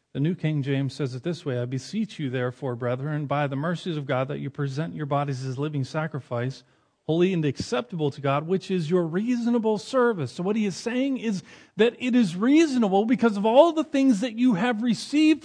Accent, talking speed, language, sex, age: American, 215 wpm, English, male, 40-59